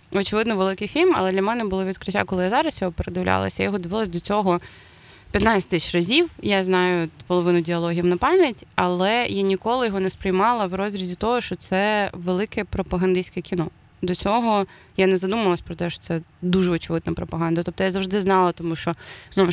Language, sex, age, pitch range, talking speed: Ukrainian, female, 20-39, 170-200 Hz, 185 wpm